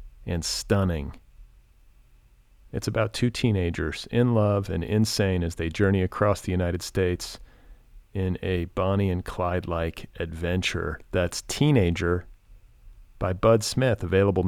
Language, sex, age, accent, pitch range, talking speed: English, male, 40-59, American, 85-110 Hz, 125 wpm